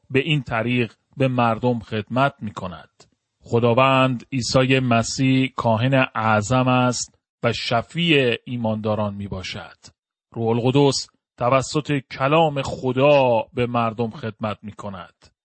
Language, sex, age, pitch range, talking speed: Persian, male, 30-49, 120-150 Hz, 110 wpm